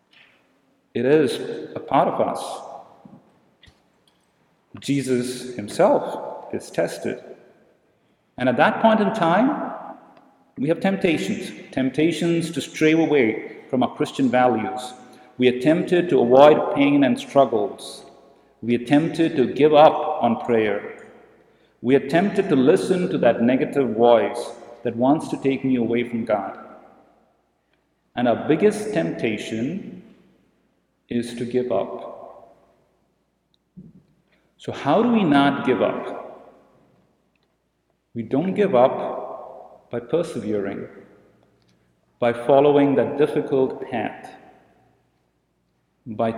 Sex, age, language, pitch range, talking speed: male, 50-69, English, 115-155 Hz, 110 wpm